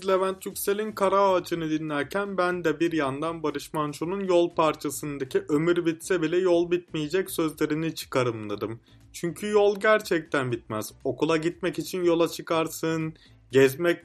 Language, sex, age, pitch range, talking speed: Turkish, male, 30-49, 140-185 Hz, 130 wpm